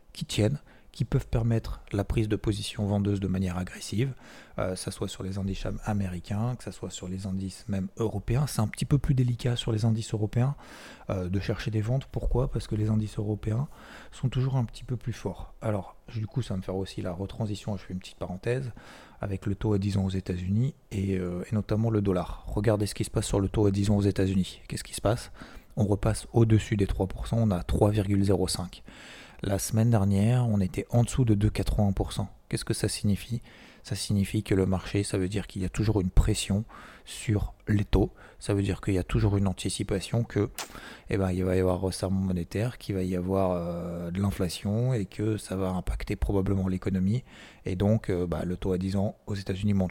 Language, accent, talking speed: French, French, 225 wpm